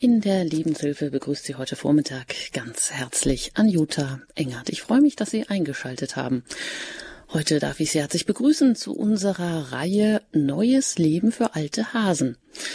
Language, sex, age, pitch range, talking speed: German, female, 30-49, 150-215 Hz, 155 wpm